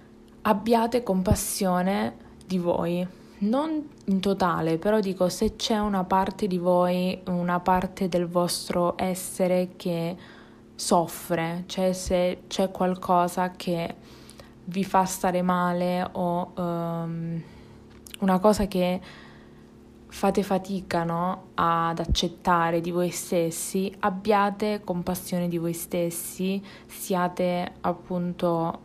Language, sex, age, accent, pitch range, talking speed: Italian, female, 20-39, native, 170-190 Hz, 105 wpm